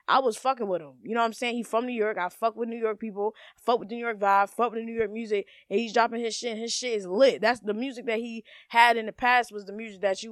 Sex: female